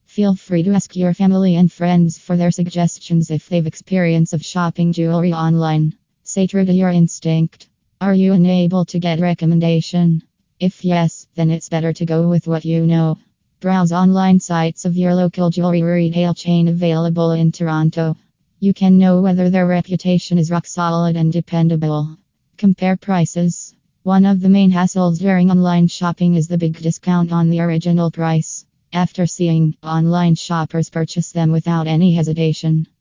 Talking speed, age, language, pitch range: 165 wpm, 20-39, English, 165-180 Hz